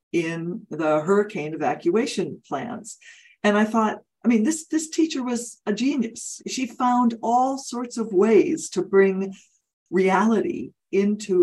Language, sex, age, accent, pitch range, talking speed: English, female, 60-79, American, 165-235 Hz, 135 wpm